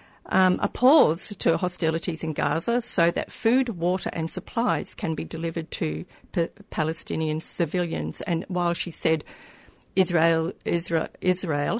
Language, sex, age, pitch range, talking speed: English, female, 50-69, 165-205 Hz, 125 wpm